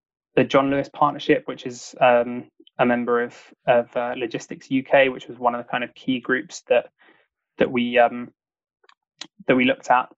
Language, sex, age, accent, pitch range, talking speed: English, male, 20-39, British, 125-140 Hz, 185 wpm